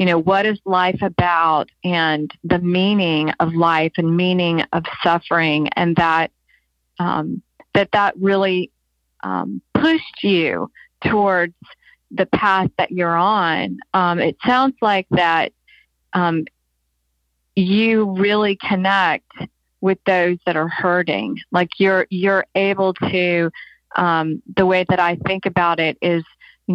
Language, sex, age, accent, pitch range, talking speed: English, female, 40-59, American, 170-195 Hz, 130 wpm